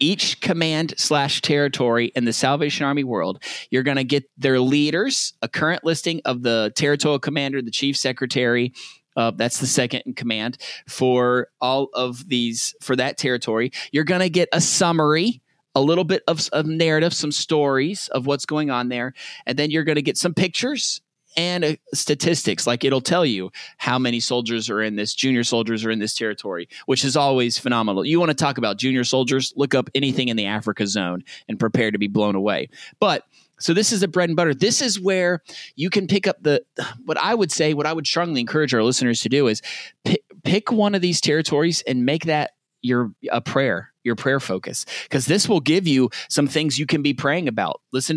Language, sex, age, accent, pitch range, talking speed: English, male, 30-49, American, 120-155 Hz, 205 wpm